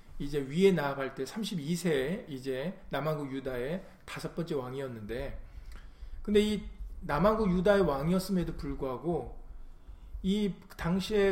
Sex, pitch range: male, 140-195 Hz